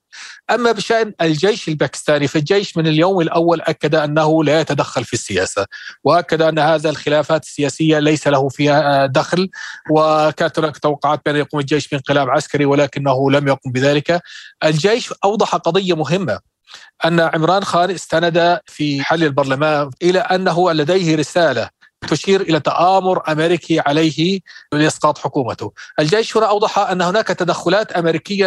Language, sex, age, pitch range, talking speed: Arabic, male, 40-59, 150-180 Hz, 135 wpm